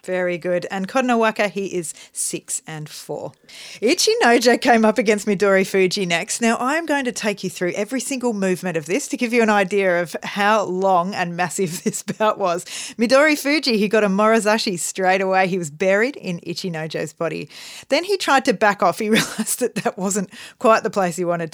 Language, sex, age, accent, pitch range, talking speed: English, female, 40-59, Australian, 180-235 Hz, 200 wpm